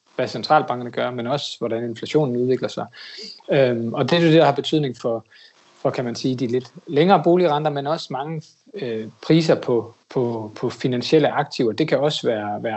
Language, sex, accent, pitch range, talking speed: Danish, male, native, 115-150 Hz, 190 wpm